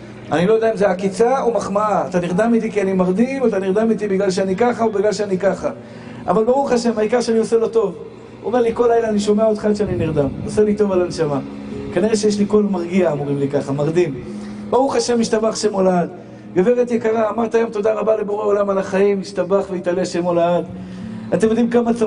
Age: 50-69